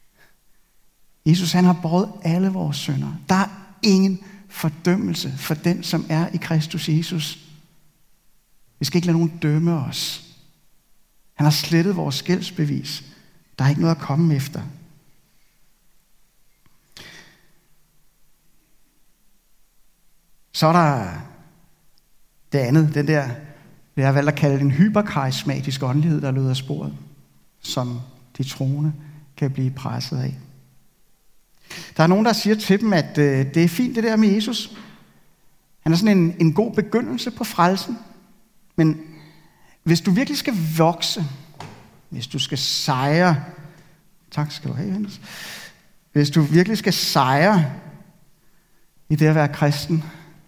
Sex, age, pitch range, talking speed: male, 60-79, 145-185 Hz, 135 wpm